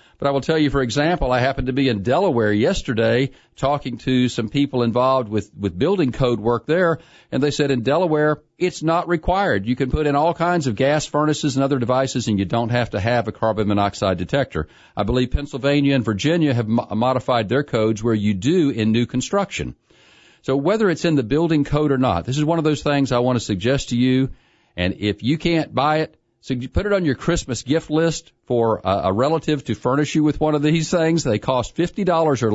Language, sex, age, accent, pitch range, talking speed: English, male, 50-69, American, 115-150 Hz, 225 wpm